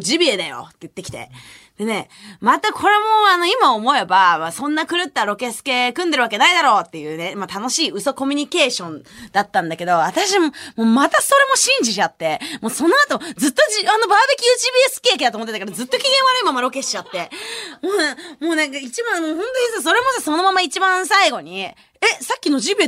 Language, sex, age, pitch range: Japanese, female, 20-39, 225-345 Hz